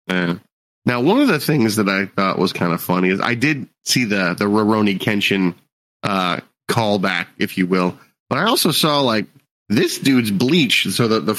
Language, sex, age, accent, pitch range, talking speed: English, male, 30-49, American, 100-125 Hz, 195 wpm